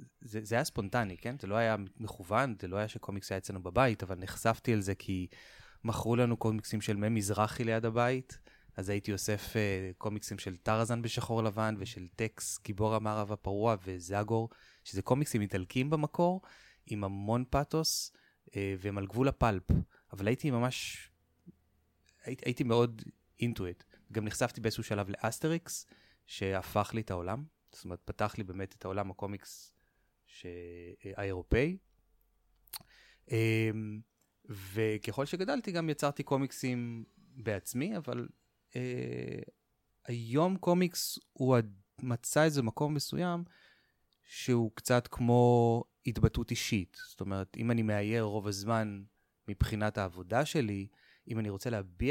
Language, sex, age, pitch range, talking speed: Hebrew, male, 20-39, 100-120 Hz, 130 wpm